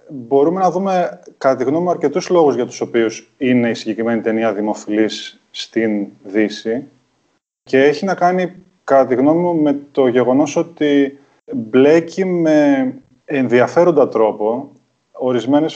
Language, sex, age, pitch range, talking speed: Greek, male, 20-39, 120-145 Hz, 135 wpm